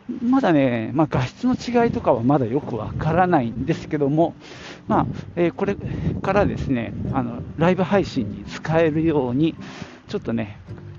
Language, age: Japanese, 50-69